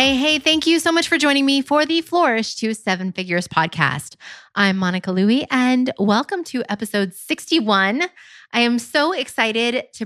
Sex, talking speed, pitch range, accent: female, 175 wpm, 180-235 Hz, American